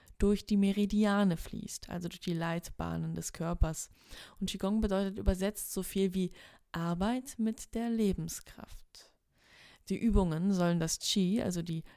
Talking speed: 140 wpm